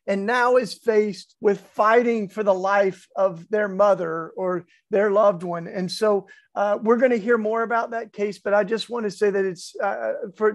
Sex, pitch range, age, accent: male, 180-220 Hz, 50-69, American